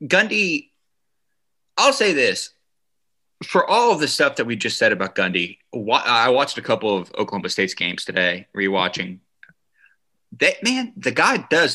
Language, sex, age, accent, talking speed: English, male, 20-39, American, 155 wpm